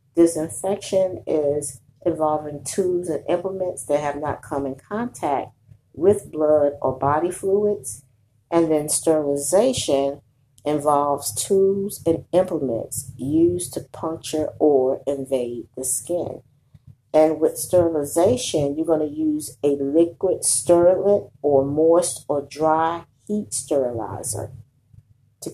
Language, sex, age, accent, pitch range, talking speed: English, female, 40-59, American, 130-160 Hz, 115 wpm